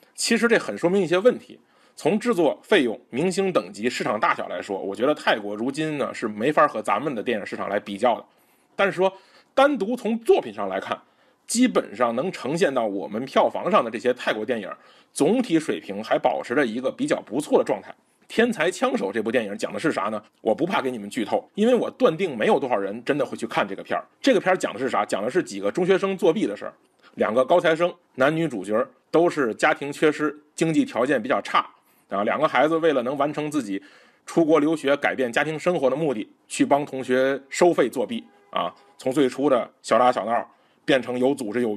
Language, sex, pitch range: Chinese, male, 130-210 Hz